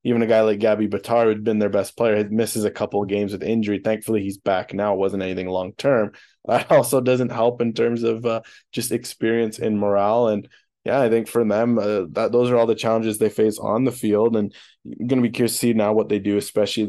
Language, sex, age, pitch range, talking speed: English, male, 20-39, 105-120 Hz, 250 wpm